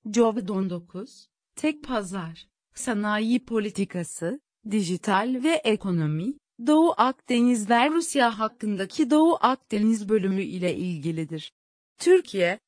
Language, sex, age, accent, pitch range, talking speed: English, female, 40-59, Turkish, 195-255 Hz, 95 wpm